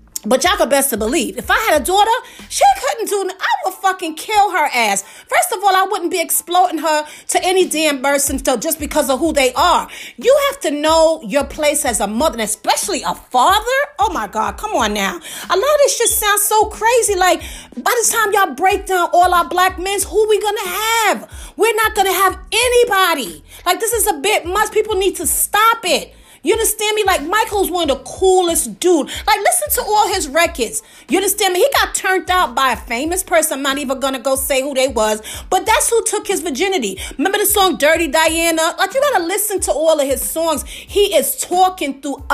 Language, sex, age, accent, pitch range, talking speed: English, female, 30-49, American, 300-410 Hz, 230 wpm